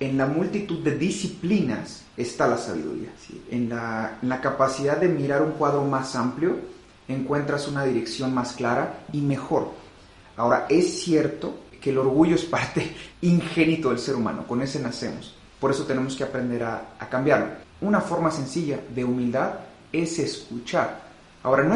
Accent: Mexican